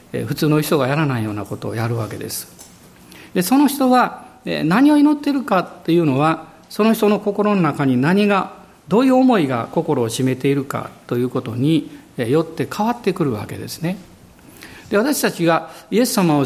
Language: Japanese